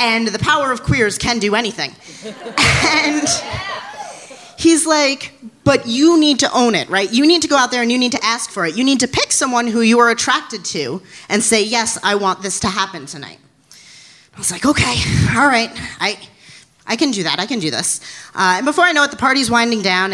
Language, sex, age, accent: English, female, 30-49, American